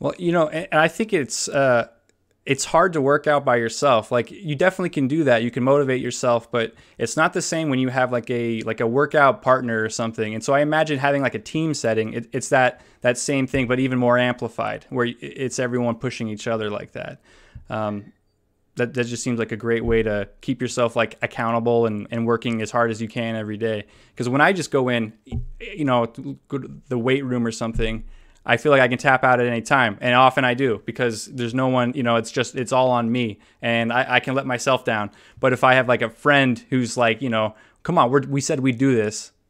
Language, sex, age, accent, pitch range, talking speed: English, male, 20-39, American, 115-140 Hz, 240 wpm